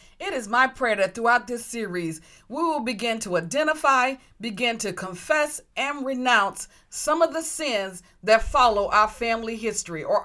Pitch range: 200-300 Hz